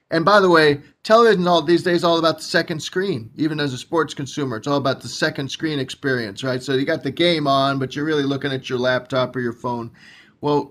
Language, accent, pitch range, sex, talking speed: English, American, 130-160 Hz, male, 245 wpm